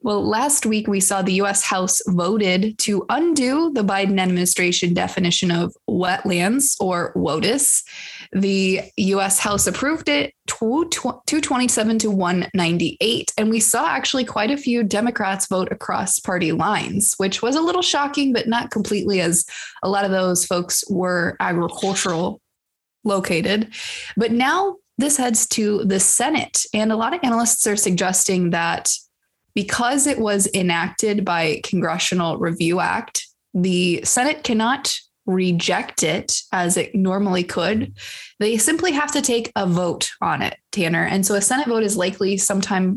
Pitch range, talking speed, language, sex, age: 185-230 Hz, 150 wpm, English, female, 20-39